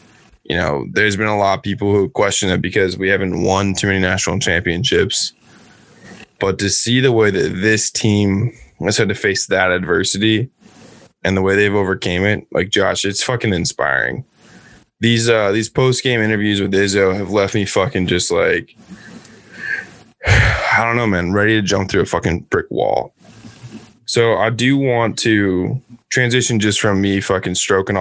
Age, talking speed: 20-39, 170 wpm